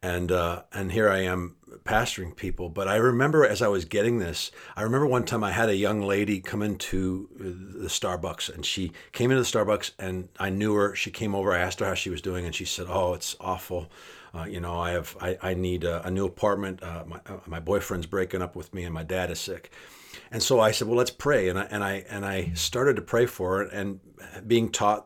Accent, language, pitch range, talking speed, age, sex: American, English, 90-105 Hz, 245 wpm, 50-69, male